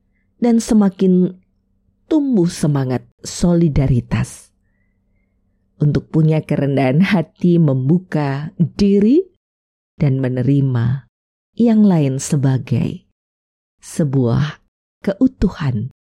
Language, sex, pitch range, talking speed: Indonesian, female, 110-165 Hz, 65 wpm